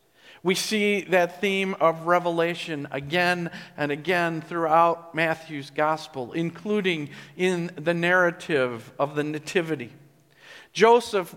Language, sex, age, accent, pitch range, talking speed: English, male, 50-69, American, 165-200 Hz, 105 wpm